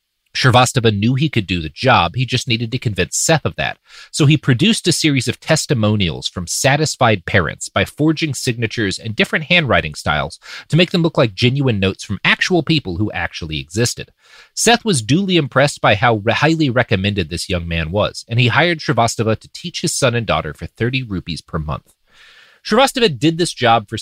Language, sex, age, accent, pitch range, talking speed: English, male, 30-49, American, 105-155 Hz, 190 wpm